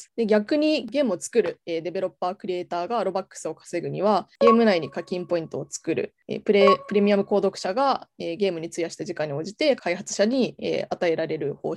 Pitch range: 175-230 Hz